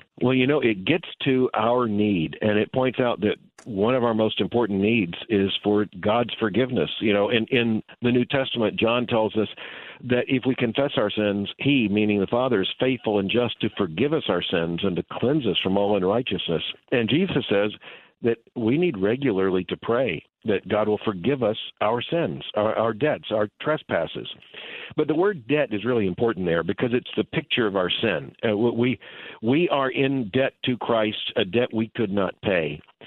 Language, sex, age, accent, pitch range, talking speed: English, male, 50-69, American, 105-130 Hz, 200 wpm